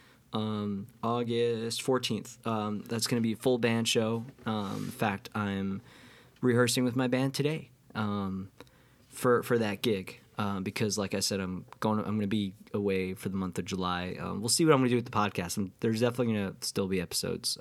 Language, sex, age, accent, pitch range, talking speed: English, male, 20-39, American, 100-125 Hz, 210 wpm